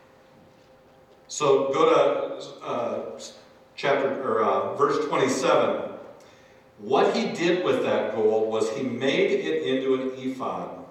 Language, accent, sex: English, American, male